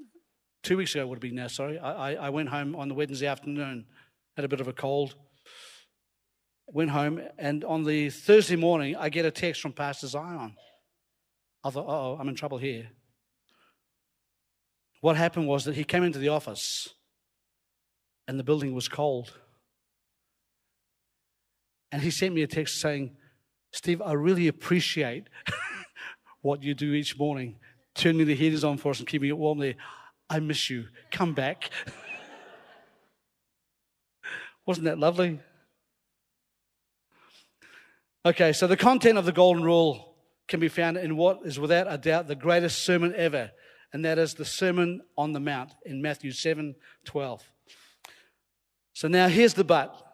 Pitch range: 140-175 Hz